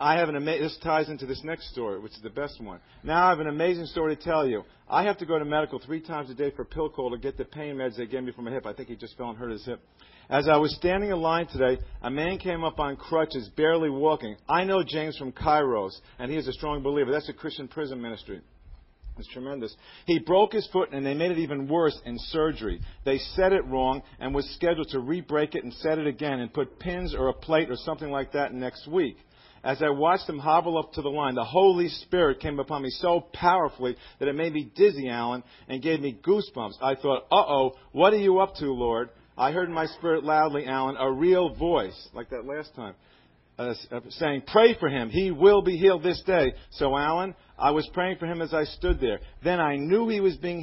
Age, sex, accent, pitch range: 50-69, male, American, 130-170 Hz